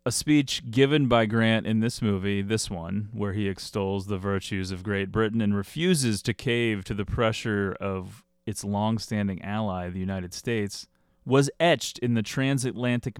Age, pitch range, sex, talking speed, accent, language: 30-49, 100-120 Hz, male, 170 wpm, American, English